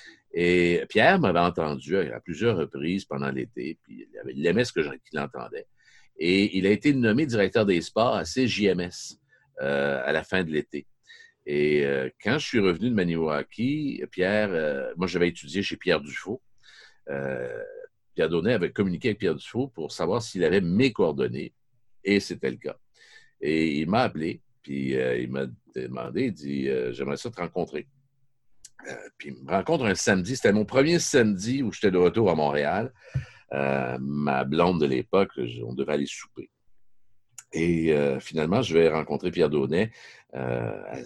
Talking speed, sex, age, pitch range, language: 170 wpm, male, 50-69, 70-115 Hz, French